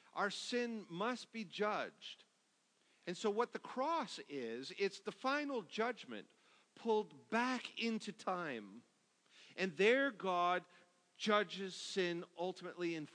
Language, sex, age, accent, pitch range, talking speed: English, male, 50-69, American, 175-230 Hz, 120 wpm